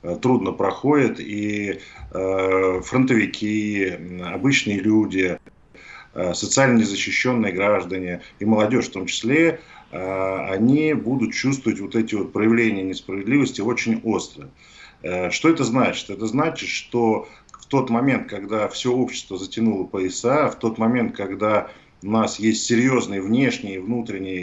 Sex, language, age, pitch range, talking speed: male, Russian, 40-59, 95-120 Hz, 130 wpm